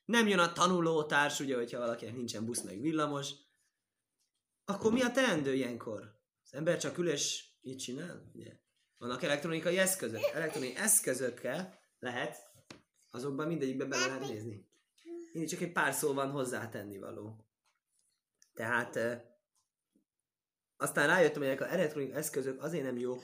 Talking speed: 140 wpm